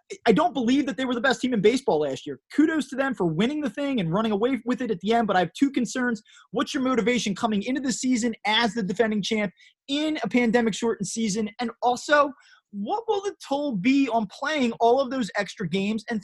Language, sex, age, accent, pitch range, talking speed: English, male, 20-39, American, 195-275 Hz, 235 wpm